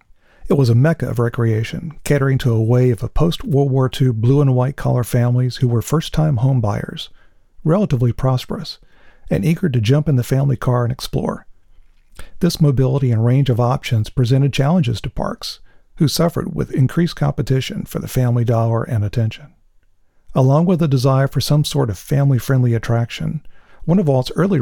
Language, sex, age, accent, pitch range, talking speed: English, male, 50-69, American, 115-140 Hz, 165 wpm